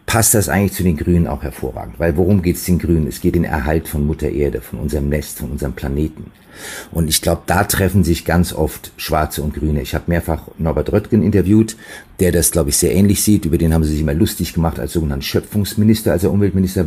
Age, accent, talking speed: 50-69, German, 235 wpm